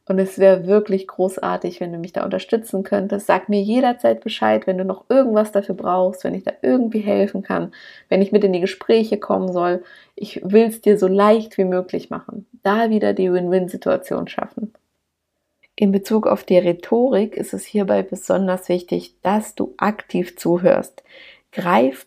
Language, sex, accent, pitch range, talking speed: German, female, German, 175-210 Hz, 175 wpm